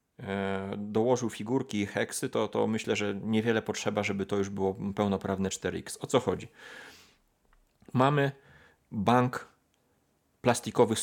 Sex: male